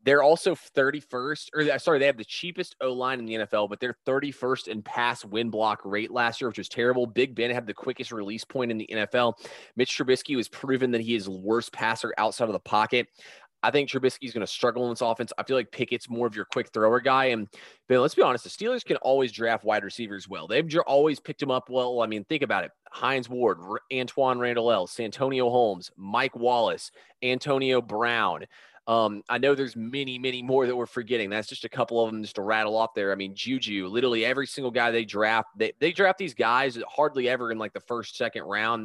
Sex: male